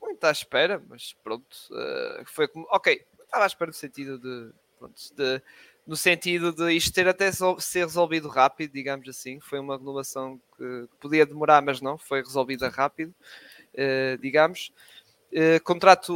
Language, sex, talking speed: Portuguese, male, 145 wpm